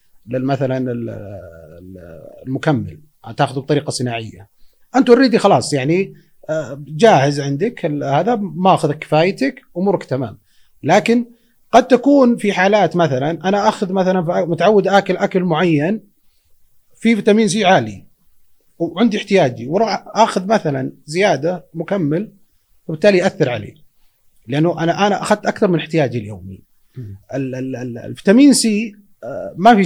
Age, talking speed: 30-49, 115 wpm